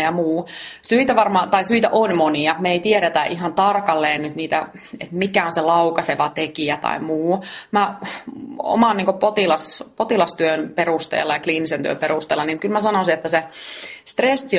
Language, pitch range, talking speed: Finnish, 160-205 Hz, 160 wpm